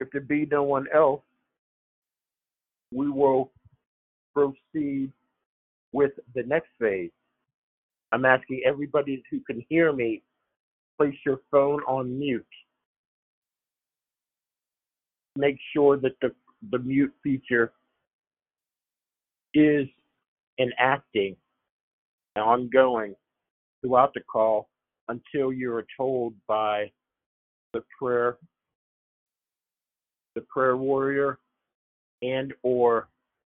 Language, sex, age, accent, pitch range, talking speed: English, male, 50-69, American, 115-140 Hz, 90 wpm